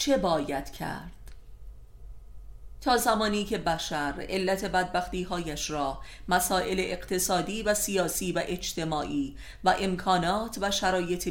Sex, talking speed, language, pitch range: female, 110 wpm, Persian, 155-190 Hz